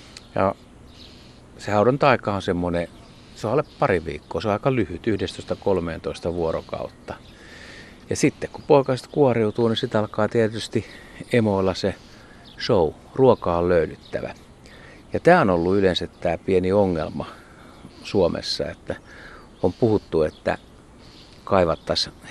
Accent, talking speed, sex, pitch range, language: native, 120 wpm, male, 85-110 Hz, Finnish